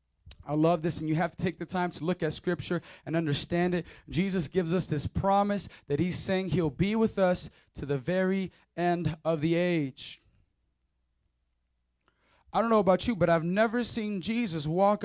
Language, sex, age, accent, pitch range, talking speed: English, male, 20-39, American, 155-210 Hz, 185 wpm